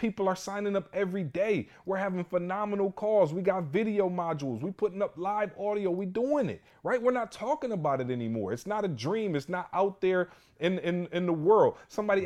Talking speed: 210 wpm